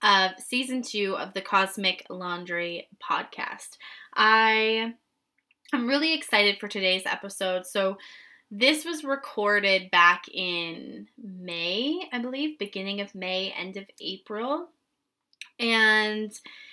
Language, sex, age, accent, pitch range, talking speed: English, female, 20-39, American, 190-245 Hz, 110 wpm